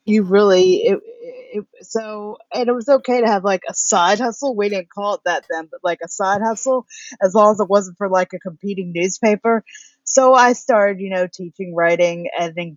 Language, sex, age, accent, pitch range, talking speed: English, female, 30-49, American, 175-215 Hz, 205 wpm